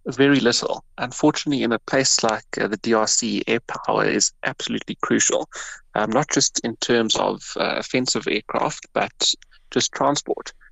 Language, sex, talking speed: English, male, 150 wpm